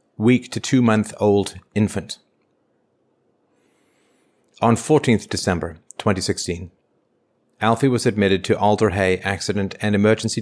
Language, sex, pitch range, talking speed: English, male, 95-115 Hz, 100 wpm